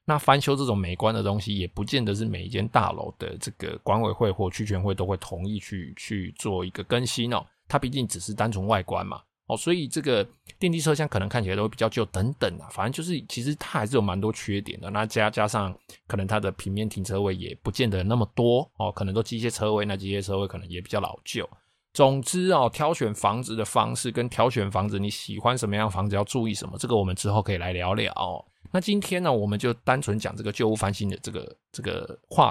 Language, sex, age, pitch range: Chinese, male, 20-39, 100-120 Hz